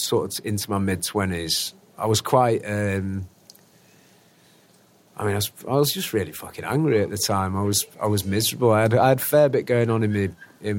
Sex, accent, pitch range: male, British, 95-115 Hz